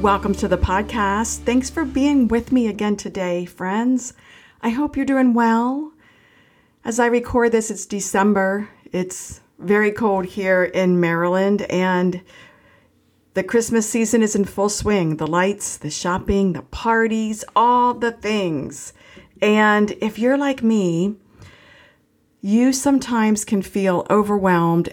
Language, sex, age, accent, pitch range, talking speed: English, female, 50-69, American, 175-225 Hz, 135 wpm